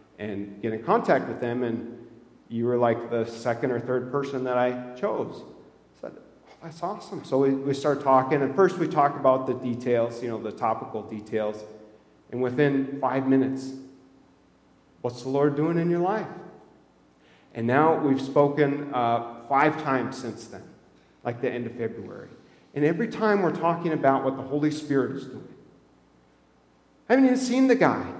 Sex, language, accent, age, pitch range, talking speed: male, English, American, 40-59, 115-155 Hz, 175 wpm